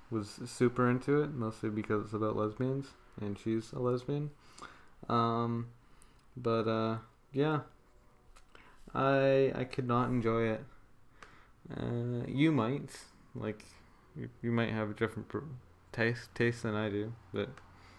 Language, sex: English, male